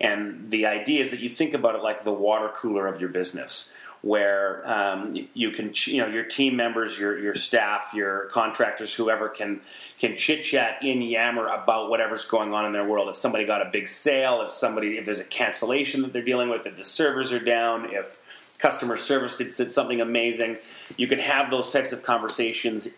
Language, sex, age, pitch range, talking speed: English, male, 30-49, 110-130 Hz, 205 wpm